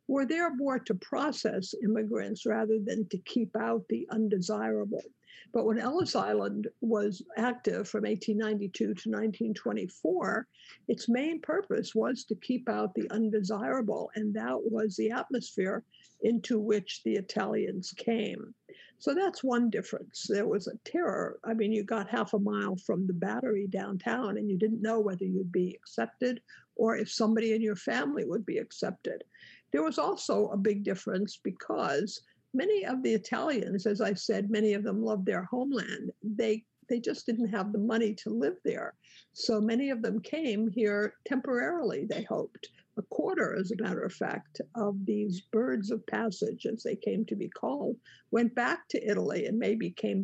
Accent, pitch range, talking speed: American, 210-235 Hz, 170 wpm